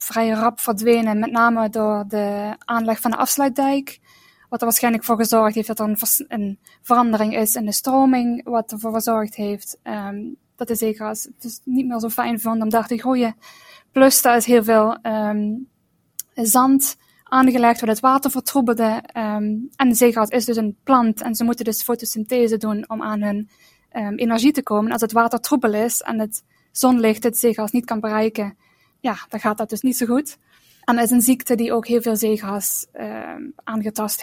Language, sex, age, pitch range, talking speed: Dutch, female, 10-29, 220-255 Hz, 195 wpm